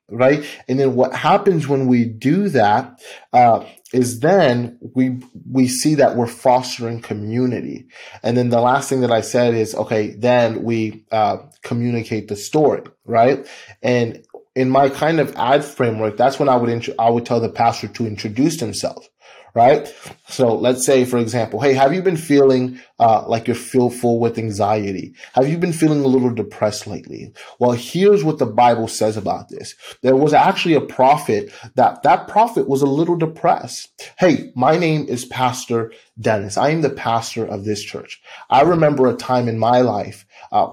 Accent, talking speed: American, 180 wpm